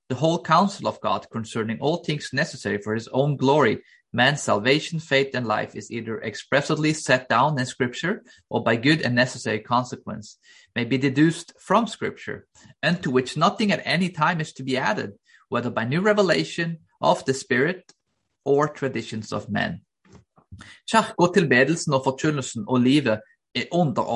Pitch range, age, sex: 115-155 Hz, 30-49, male